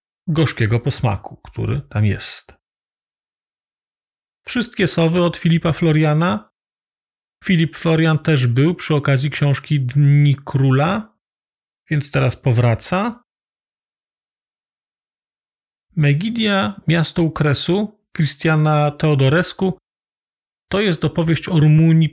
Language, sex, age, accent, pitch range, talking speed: Polish, male, 40-59, native, 130-165 Hz, 85 wpm